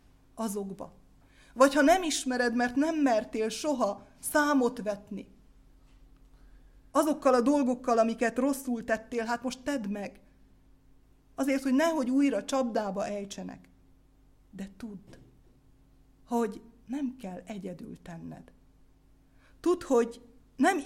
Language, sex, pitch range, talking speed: Hungarian, female, 195-255 Hz, 105 wpm